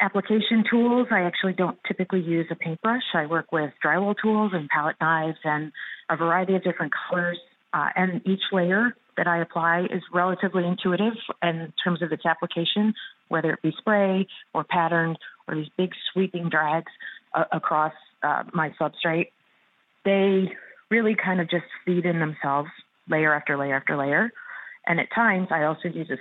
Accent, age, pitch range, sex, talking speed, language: American, 40-59, 155-185 Hz, female, 170 wpm, English